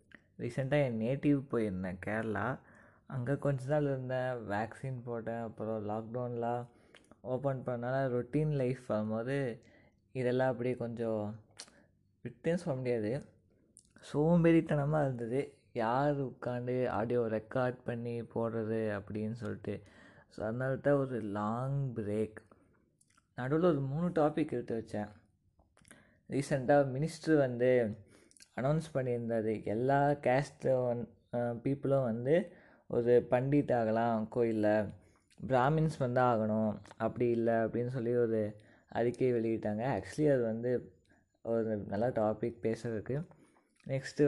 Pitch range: 110-135 Hz